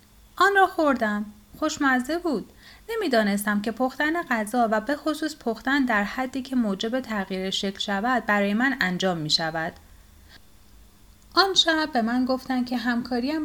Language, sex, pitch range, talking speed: Persian, female, 195-260 Hz, 145 wpm